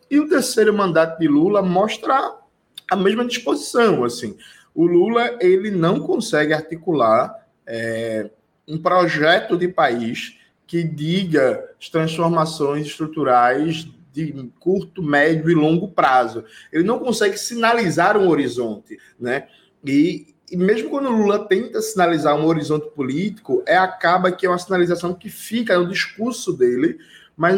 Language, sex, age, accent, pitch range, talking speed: Portuguese, male, 20-39, Brazilian, 160-215 Hz, 125 wpm